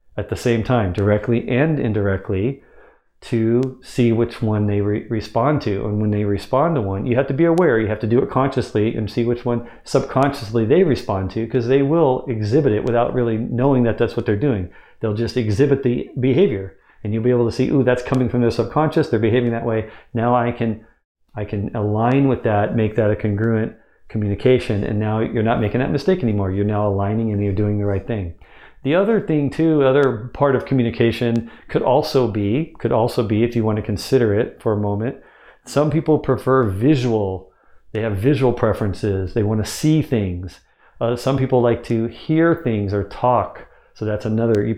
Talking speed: 205 wpm